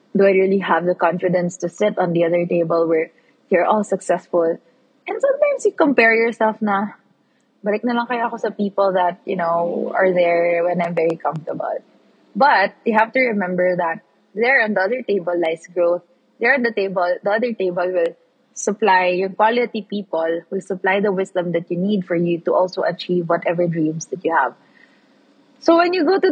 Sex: female